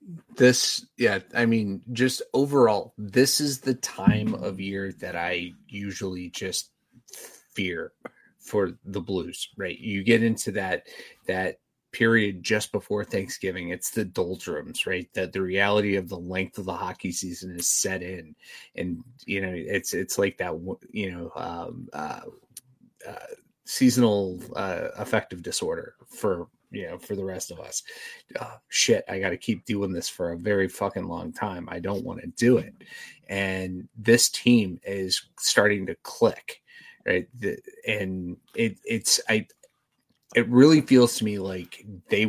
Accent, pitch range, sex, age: American, 95-125 Hz, male, 30-49